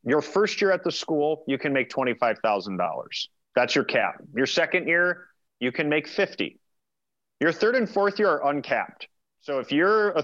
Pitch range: 135-200 Hz